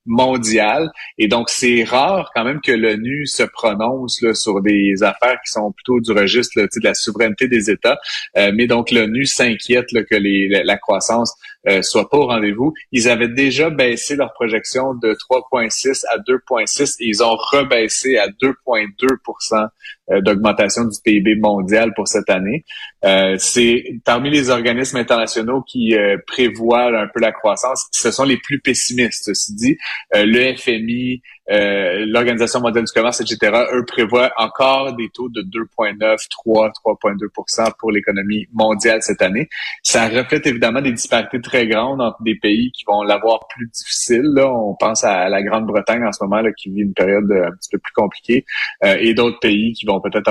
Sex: male